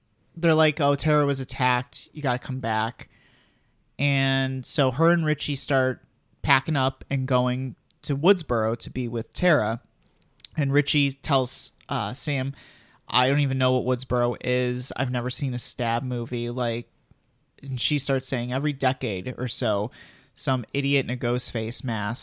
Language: English